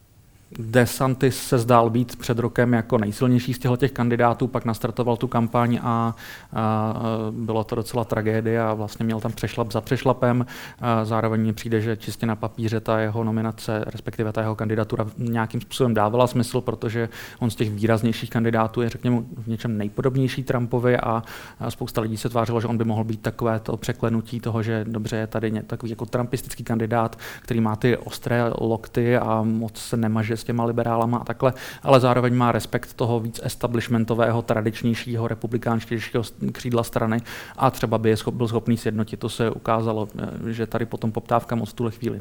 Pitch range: 110-120 Hz